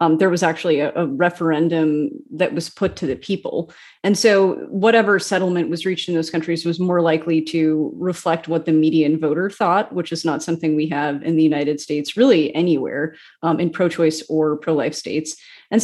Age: 30-49